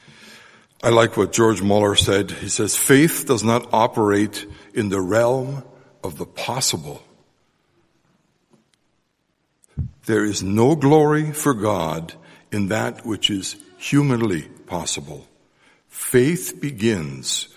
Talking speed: 110 wpm